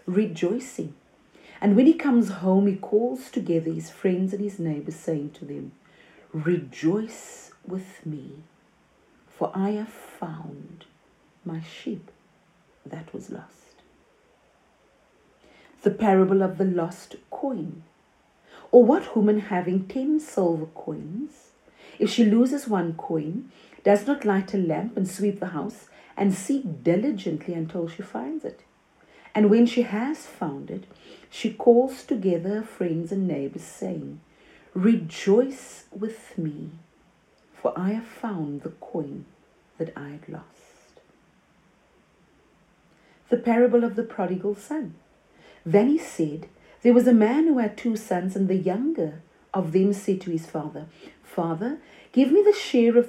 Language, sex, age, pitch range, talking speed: English, female, 40-59, 170-240 Hz, 140 wpm